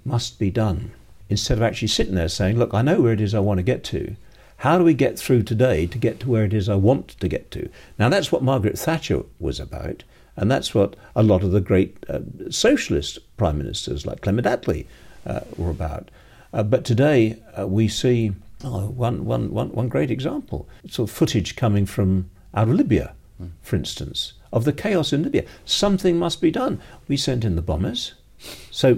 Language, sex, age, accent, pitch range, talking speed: English, male, 50-69, British, 100-135 Hz, 205 wpm